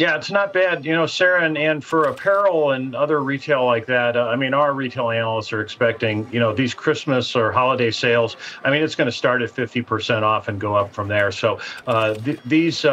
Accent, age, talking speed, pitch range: American, 50-69, 225 wpm, 120-155 Hz